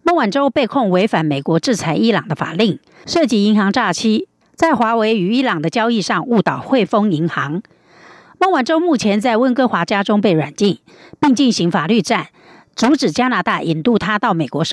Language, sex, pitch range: German, female, 195-270 Hz